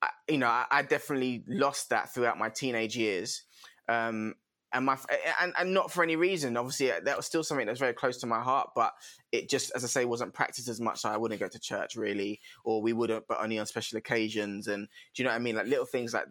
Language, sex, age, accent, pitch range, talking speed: English, male, 20-39, British, 115-130 Hz, 250 wpm